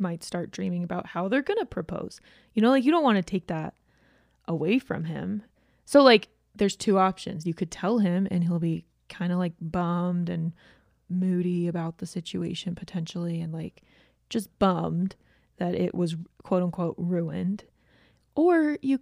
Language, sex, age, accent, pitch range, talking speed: English, female, 20-39, American, 175-235 Hz, 165 wpm